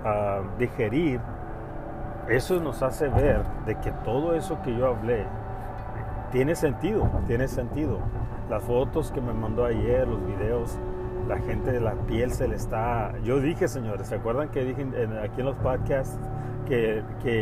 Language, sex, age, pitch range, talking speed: Spanish, male, 40-59, 105-125 Hz, 155 wpm